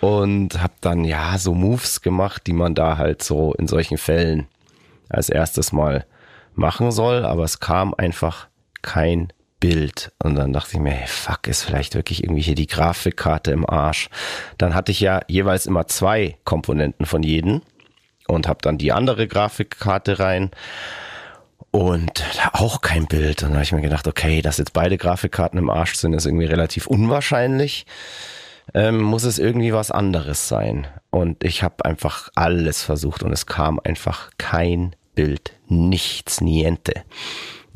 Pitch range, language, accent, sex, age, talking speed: 80-100 Hz, German, German, male, 30-49, 165 wpm